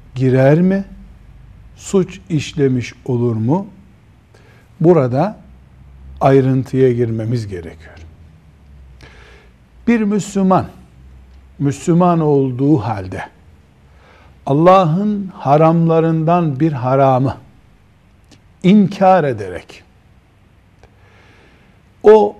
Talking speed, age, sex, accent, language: 60 wpm, 60-79, male, native, Turkish